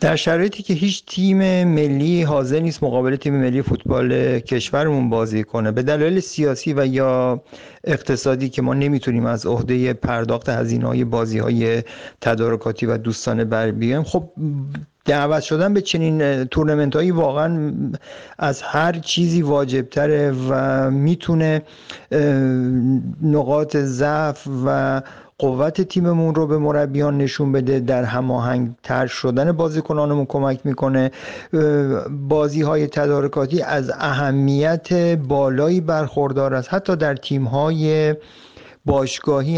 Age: 50-69